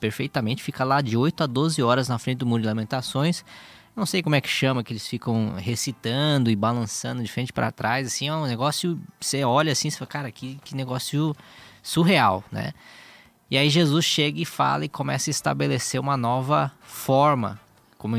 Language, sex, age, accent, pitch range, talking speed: Portuguese, male, 20-39, Brazilian, 115-145 Hz, 195 wpm